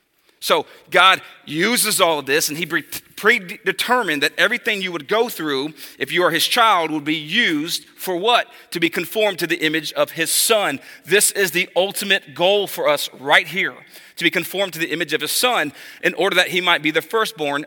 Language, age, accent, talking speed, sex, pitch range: English, 40-59, American, 205 wpm, male, 160-200 Hz